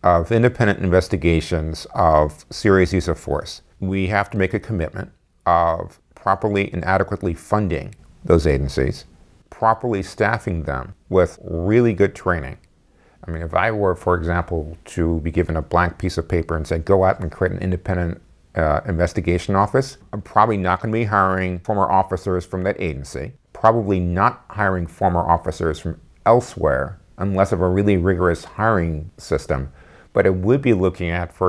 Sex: male